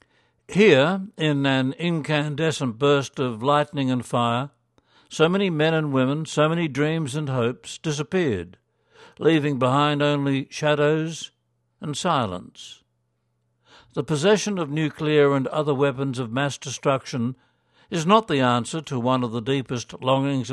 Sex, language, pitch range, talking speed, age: male, English, 125-150 Hz, 135 wpm, 60-79